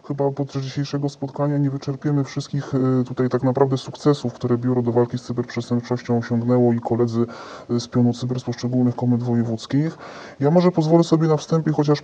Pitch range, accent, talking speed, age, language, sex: 125-145 Hz, native, 170 wpm, 20-39, Polish, female